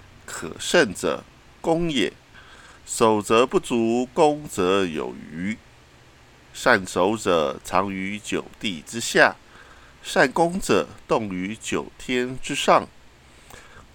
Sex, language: male, Chinese